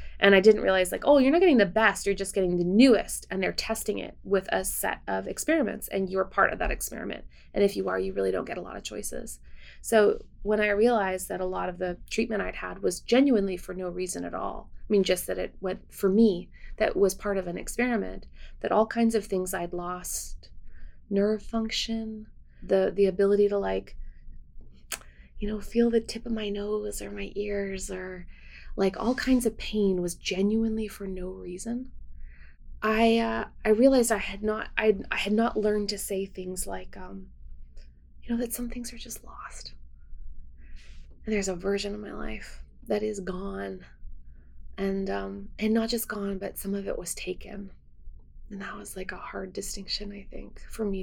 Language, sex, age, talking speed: English, female, 20-39, 200 wpm